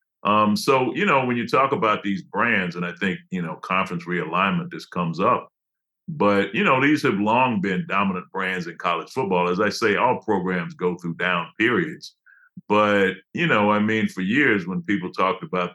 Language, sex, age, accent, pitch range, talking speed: English, male, 50-69, American, 90-110 Hz, 200 wpm